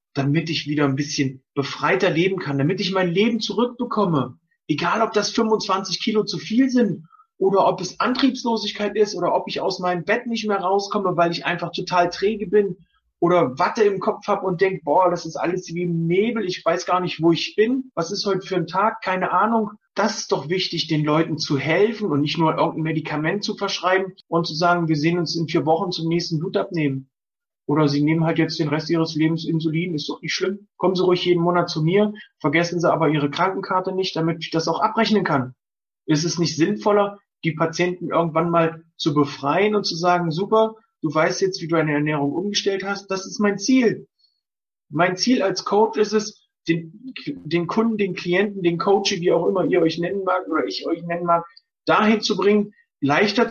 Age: 30-49